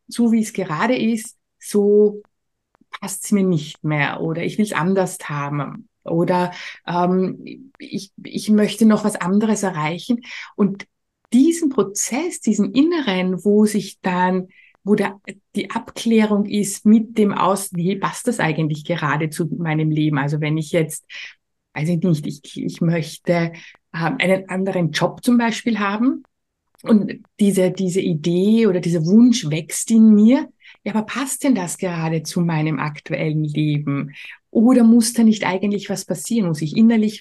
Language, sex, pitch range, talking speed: German, female, 175-220 Hz, 160 wpm